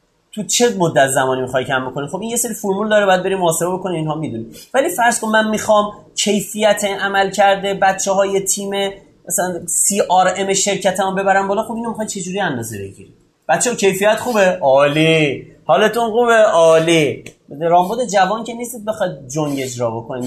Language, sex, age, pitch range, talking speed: Persian, male, 30-49, 145-205 Hz, 200 wpm